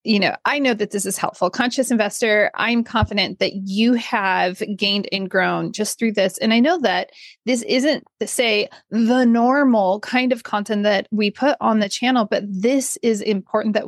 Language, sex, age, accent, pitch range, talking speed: English, female, 30-49, American, 195-245 Hz, 190 wpm